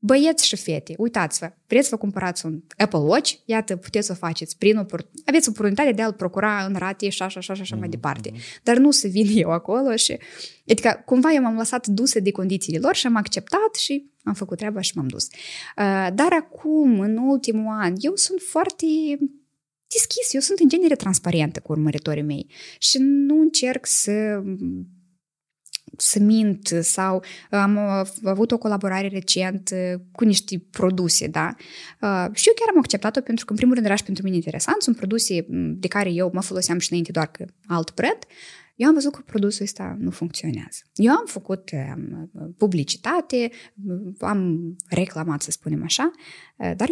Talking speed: 180 wpm